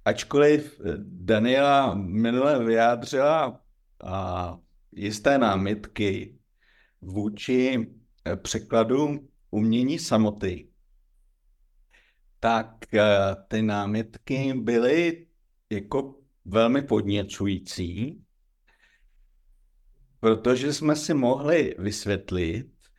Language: Czech